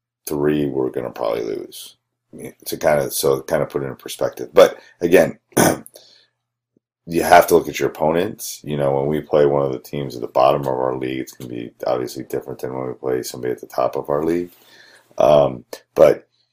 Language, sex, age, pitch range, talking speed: English, male, 30-49, 65-80 Hz, 205 wpm